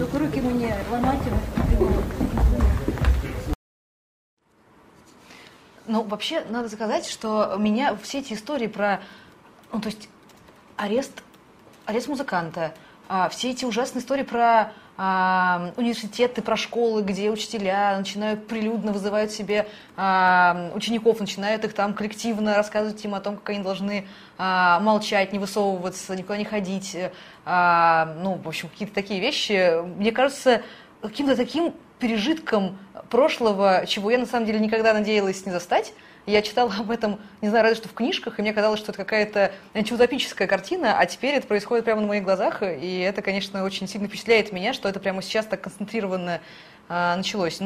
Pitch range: 195-230 Hz